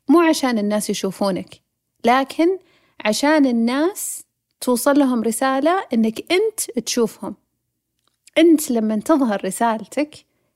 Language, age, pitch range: Arabic, 30-49, 205-255 Hz